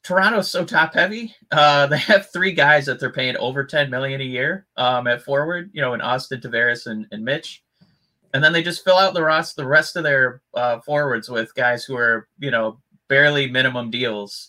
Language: English